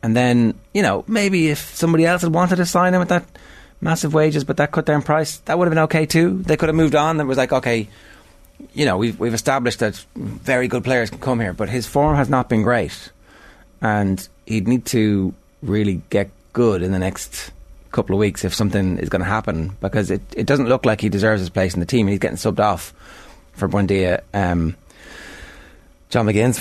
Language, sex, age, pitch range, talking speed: English, male, 30-49, 95-130 Hz, 220 wpm